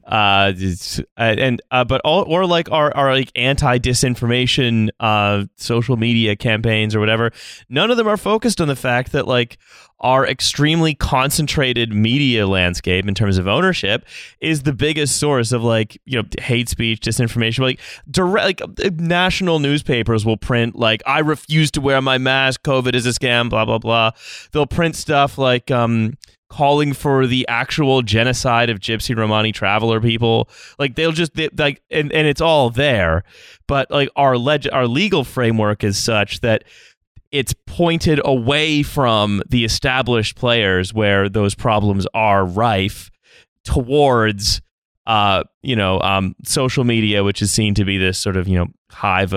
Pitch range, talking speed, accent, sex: 105-140 Hz, 165 wpm, American, male